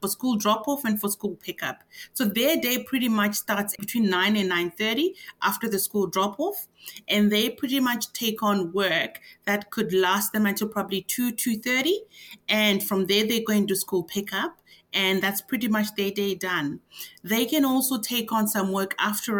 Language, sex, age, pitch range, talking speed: English, female, 30-49, 195-235 Hz, 185 wpm